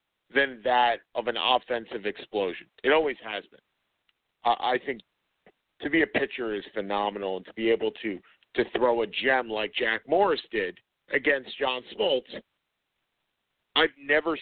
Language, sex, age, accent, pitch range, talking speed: English, male, 50-69, American, 110-135 Hz, 150 wpm